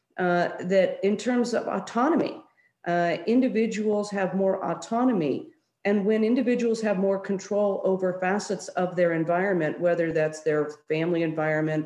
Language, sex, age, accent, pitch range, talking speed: English, female, 40-59, American, 155-195 Hz, 130 wpm